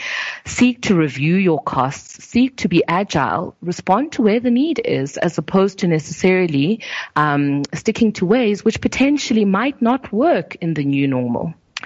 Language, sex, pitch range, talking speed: English, female, 140-185 Hz, 160 wpm